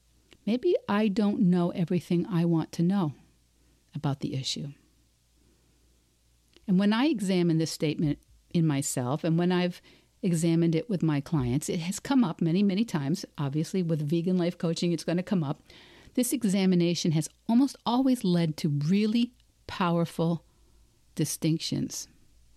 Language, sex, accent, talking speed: English, female, American, 145 wpm